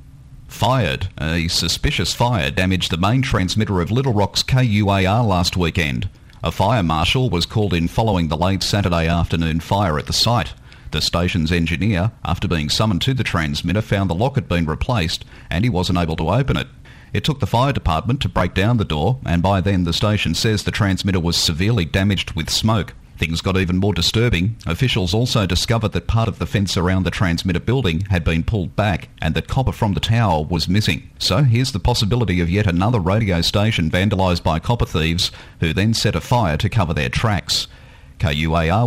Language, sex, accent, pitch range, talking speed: English, male, Australian, 85-110 Hz, 195 wpm